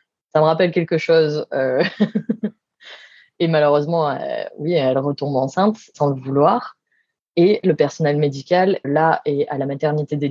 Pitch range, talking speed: 140-170 Hz, 145 wpm